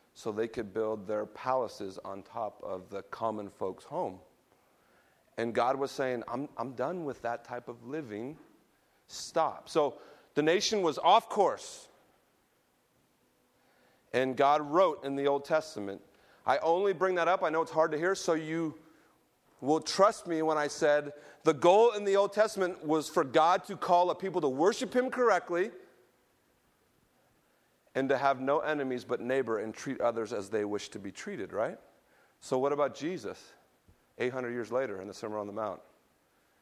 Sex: male